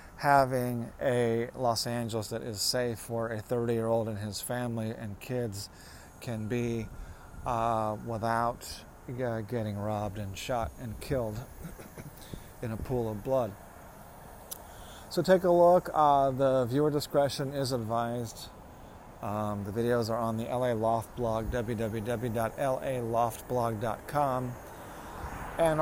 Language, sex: English, male